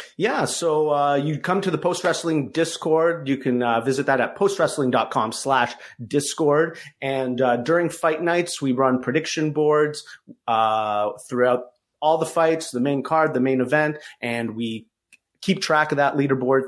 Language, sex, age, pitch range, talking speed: English, male, 30-49, 125-160 Hz, 160 wpm